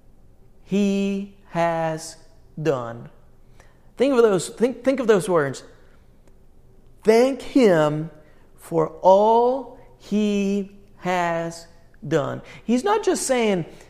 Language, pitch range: English, 155-225 Hz